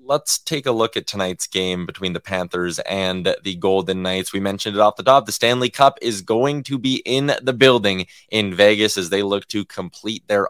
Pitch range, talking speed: 100-135 Hz, 215 wpm